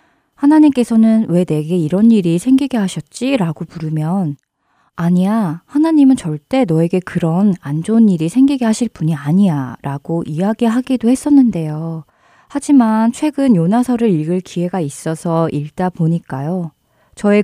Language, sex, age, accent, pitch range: Korean, female, 20-39, native, 160-225 Hz